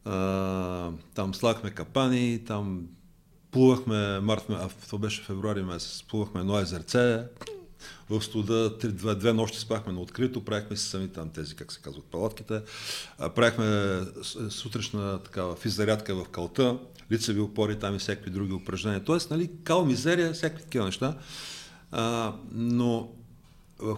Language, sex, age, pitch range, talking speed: Bulgarian, male, 50-69, 105-150 Hz, 135 wpm